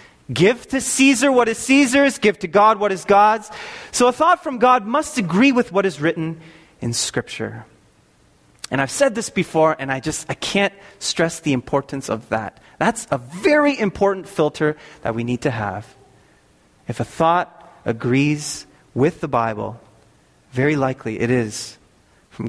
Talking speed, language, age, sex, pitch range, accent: 165 wpm, English, 30-49, male, 130-200 Hz, American